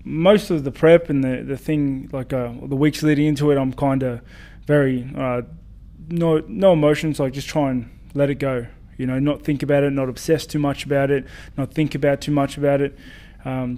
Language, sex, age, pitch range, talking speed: English, male, 20-39, 130-150 Hz, 220 wpm